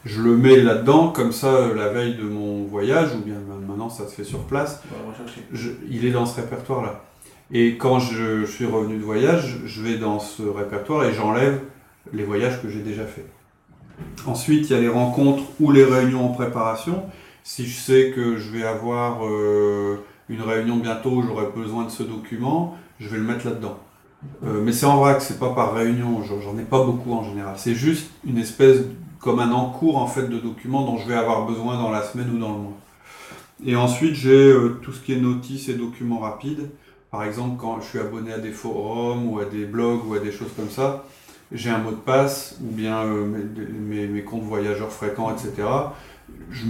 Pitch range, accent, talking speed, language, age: 110-130 Hz, French, 210 wpm, French, 30-49